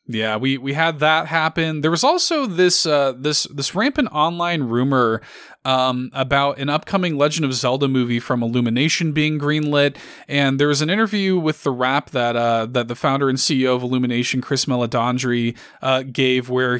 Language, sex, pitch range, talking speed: English, male, 130-180 Hz, 180 wpm